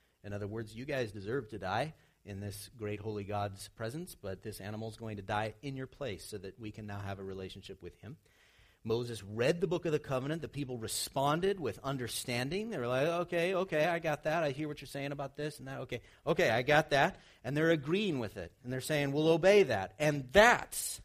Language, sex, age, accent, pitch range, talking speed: English, male, 40-59, American, 105-140 Hz, 230 wpm